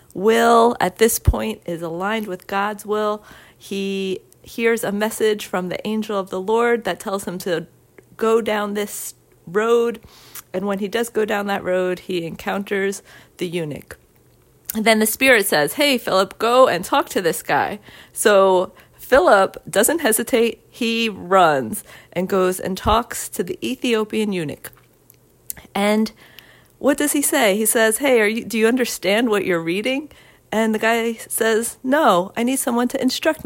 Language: English